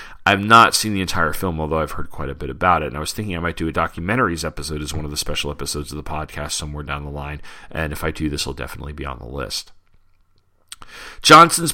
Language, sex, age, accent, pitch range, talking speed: English, male, 40-59, American, 80-100 Hz, 250 wpm